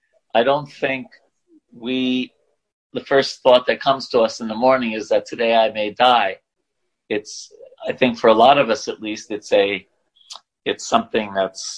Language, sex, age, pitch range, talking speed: English, male, 40-59, 100-140 Hz, 180 wpm